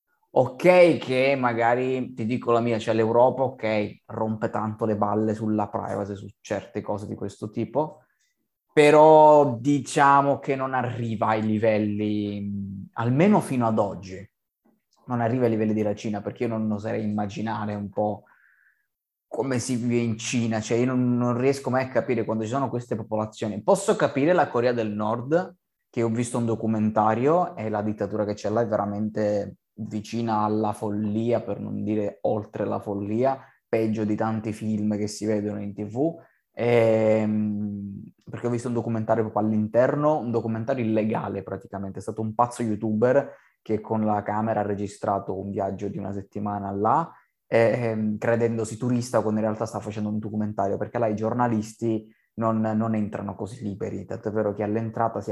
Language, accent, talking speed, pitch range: Italian, native, 165 wpm, 105-120 Hz